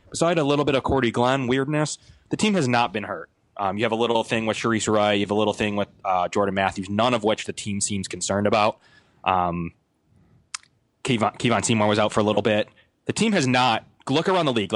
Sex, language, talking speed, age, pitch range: male, English, 235 wpm, 20-39, 95-115 Hz